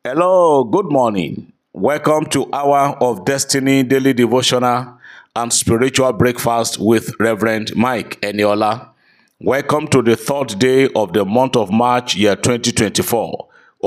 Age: 50-69